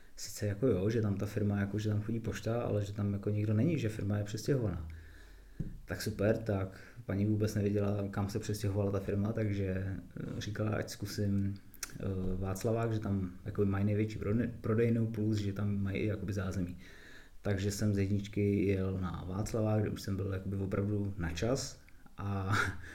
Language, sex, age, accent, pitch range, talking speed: Czech, male, 20-39, native, 100-110 Hz, 165 wpm